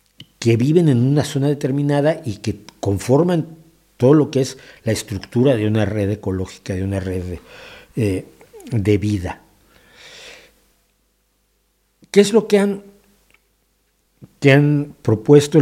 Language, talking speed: Spanish, 125 wpm